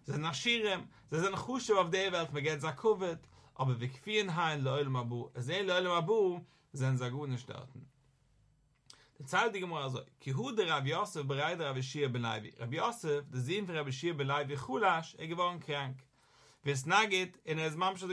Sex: male